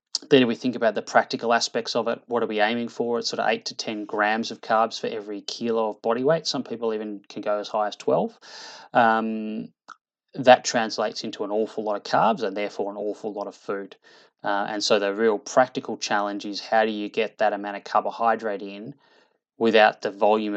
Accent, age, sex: Australian, 20-39, male